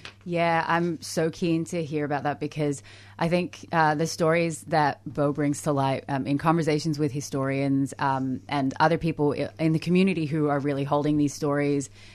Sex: female